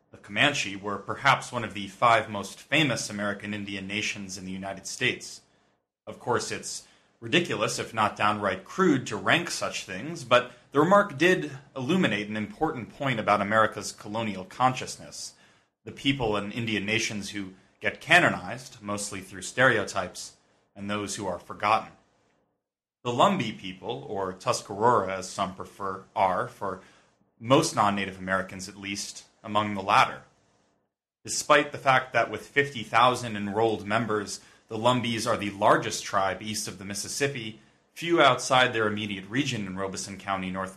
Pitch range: 100-115 Hz